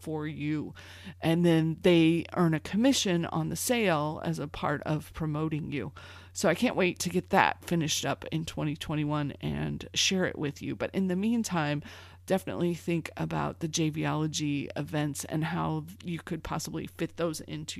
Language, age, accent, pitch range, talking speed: English, 30-49, American, 150-170 Hz, 170 wpm